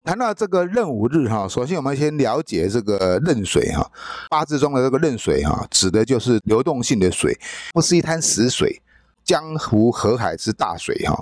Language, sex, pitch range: Chinese, male, 115-170 Hz